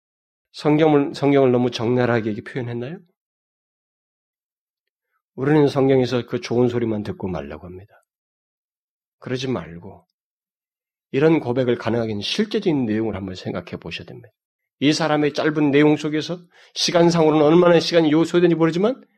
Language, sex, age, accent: Korean, male, 40-59, native